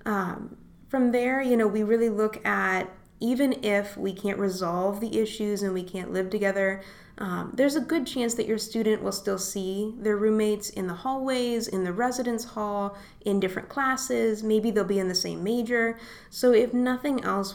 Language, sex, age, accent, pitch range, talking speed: English, female, 20-39, American, 195-235 Hz, 190 wpm